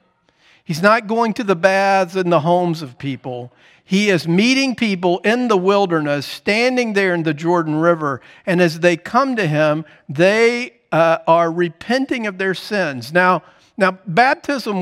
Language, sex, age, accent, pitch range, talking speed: English, male, 50-69, American, 155-210 Hz, 160 wpm